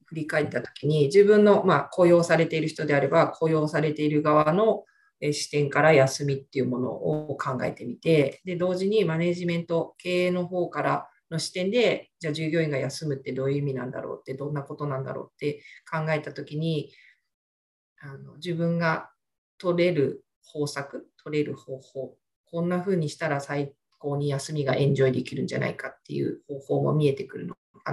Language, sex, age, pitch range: Japanese, female, 40-59, 140-170 Hz